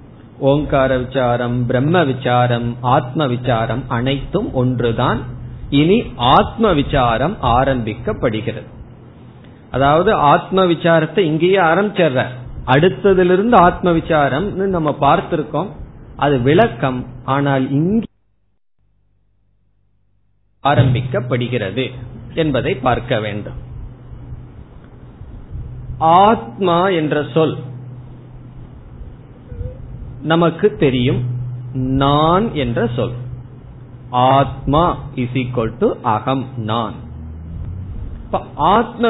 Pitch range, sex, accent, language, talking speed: 120-155 Hz, male, native, Tamil, 70 wpm